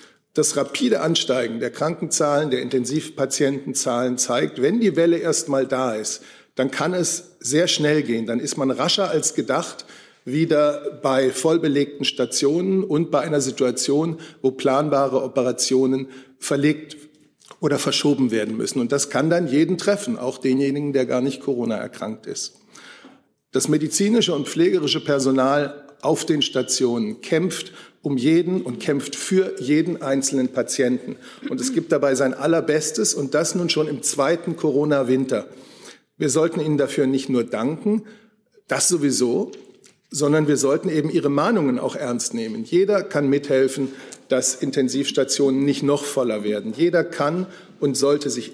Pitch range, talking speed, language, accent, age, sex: 130-170 Hz, 145 wpm, German, German, 50-69, male